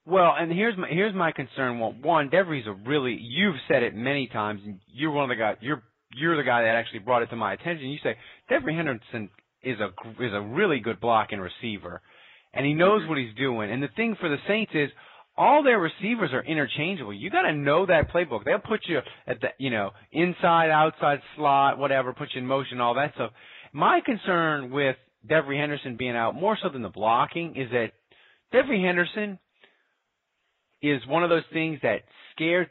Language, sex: English, male